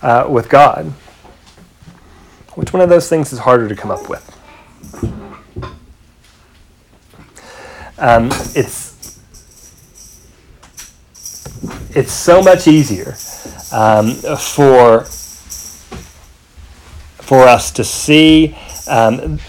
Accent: American